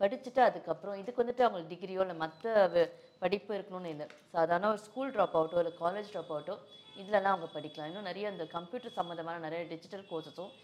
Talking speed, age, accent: 175 wpm, 20-39, native